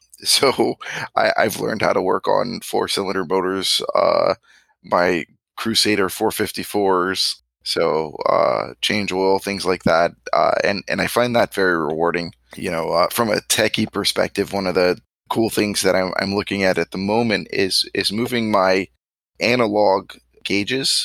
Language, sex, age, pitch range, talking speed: English, male, 20-39, 90-105 Hz, 155 wpm